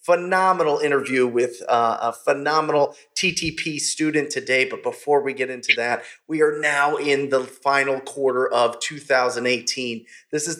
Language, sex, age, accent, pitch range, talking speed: English, male, 30-49, American, 130-170 Hz, 145 wpm